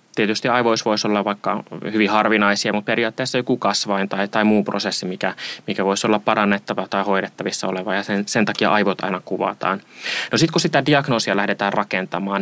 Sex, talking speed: male, 180 wpm